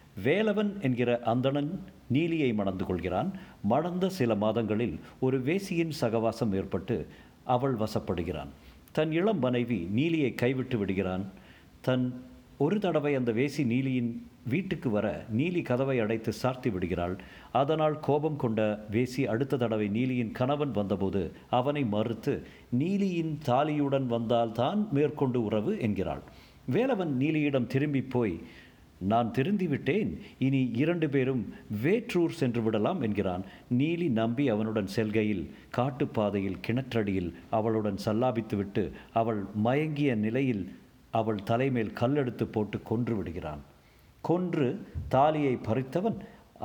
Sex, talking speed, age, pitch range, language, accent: male, 105 wpm, 50-69, 105-140 Hz, Tamil, native